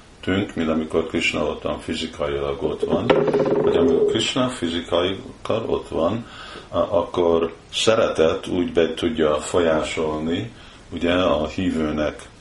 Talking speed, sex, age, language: 105 wpm, male, 50-69, Hungarian